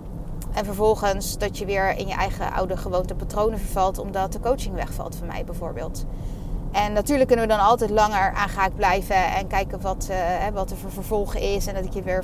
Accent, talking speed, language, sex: Dutch, 210 wpm, Dutch, female